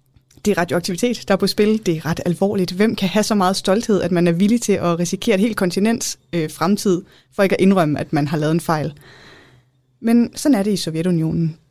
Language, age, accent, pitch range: Danish, 20-39, native, 160-210 Hz